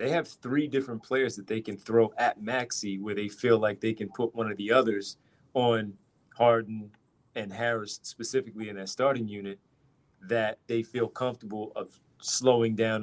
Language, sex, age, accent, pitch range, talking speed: English, male, 30-49, American, 110-135 Hz, 175 wpm